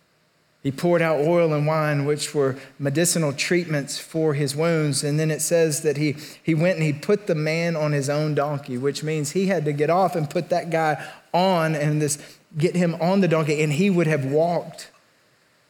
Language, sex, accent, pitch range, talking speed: English, male, American, 155-200 Hz, 205 wpm